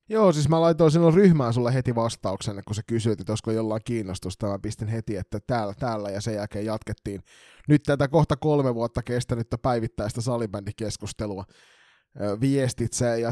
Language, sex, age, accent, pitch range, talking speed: Finnish, male, 20-39, native, 110-135 Hz, 160 wpm